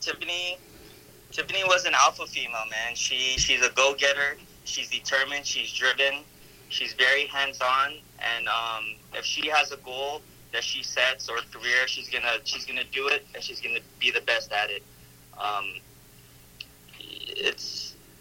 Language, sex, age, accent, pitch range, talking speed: English, male, 20-39, American, 115-140 Hz, 160 wpm